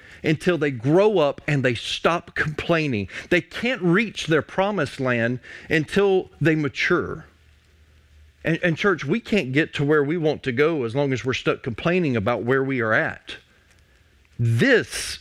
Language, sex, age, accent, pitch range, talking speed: English, male, 40-59, American, 120-195 Hz, 160 wpm